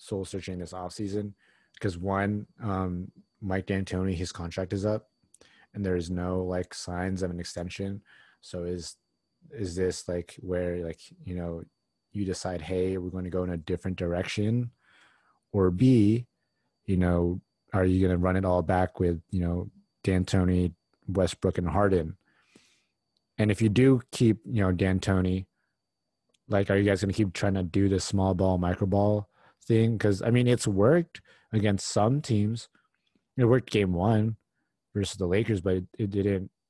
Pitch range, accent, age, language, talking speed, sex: 90-110 Hz, American, 30-49, English, 170 wpm, male